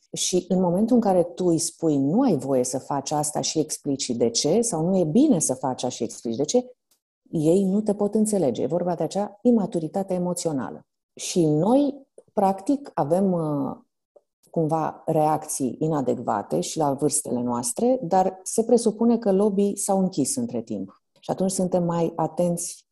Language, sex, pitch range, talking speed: Romanian, female, 145-195 Hz, 170 wpm